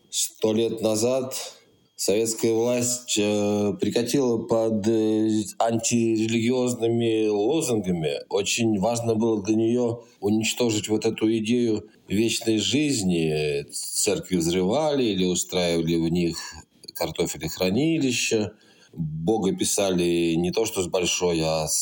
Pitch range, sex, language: 100-125 Hz, male, Russian